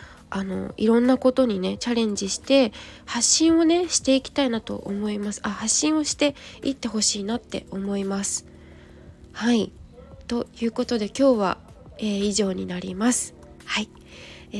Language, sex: Japanese, female